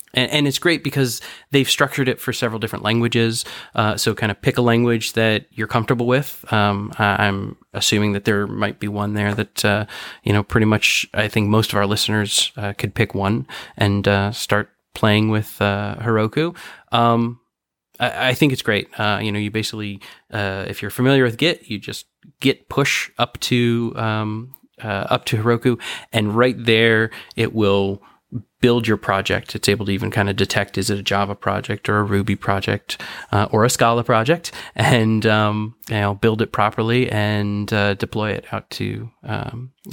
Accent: American